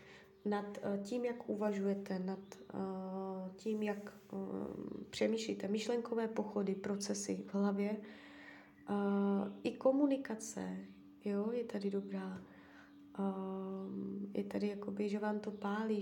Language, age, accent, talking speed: Czech, 20-39, native, 95 wpm